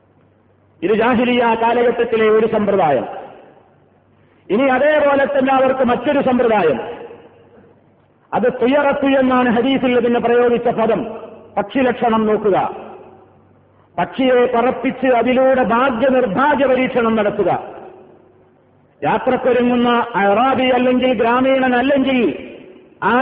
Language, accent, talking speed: Malayalam, native, 80 wpm